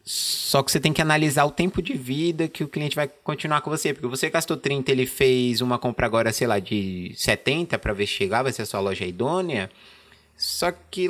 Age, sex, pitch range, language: 20-39, male, 120-145 Hz, Portuguese